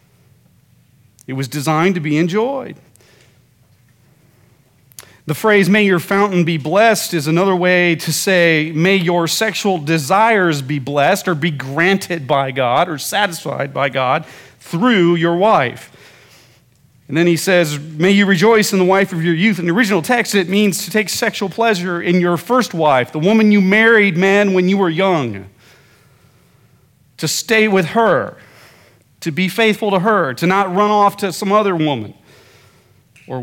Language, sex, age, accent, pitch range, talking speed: English, male, 40-59, American, 135-185 Hz, 160 wpm